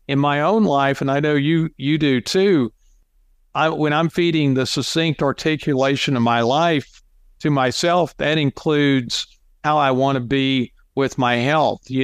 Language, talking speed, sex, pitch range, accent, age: English, 170 wpm, male, 125-150 Hz, American, 50-69